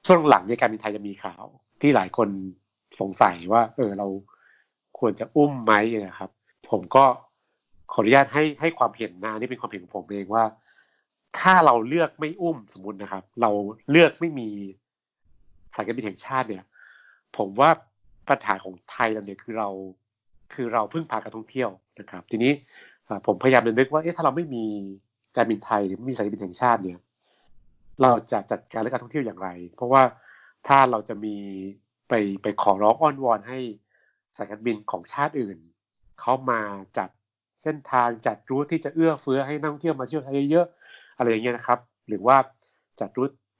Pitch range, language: 105-140 Hz, Thai